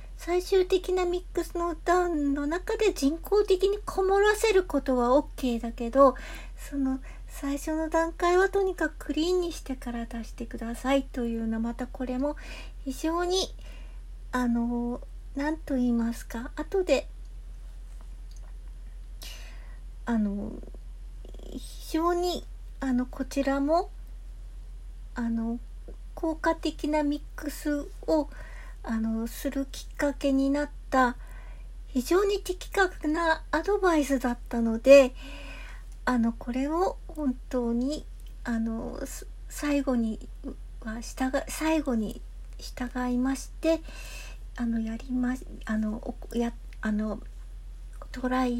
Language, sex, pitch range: Japanese, female, 245-325 Hz